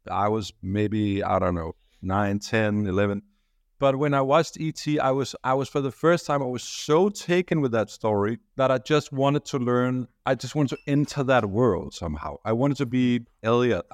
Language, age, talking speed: English, 50-69, 205 wpm